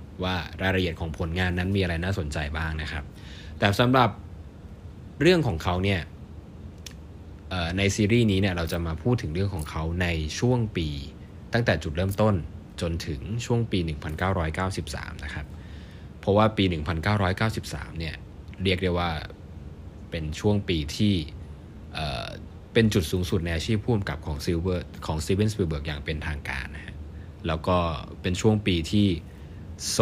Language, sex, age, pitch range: Thai, male, 20-39, 80-95 Hz